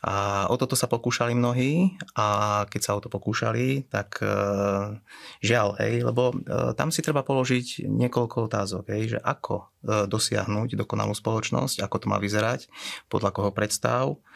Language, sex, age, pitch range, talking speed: Slovak, male, 30-49, 105-125 Hz, 155 wpm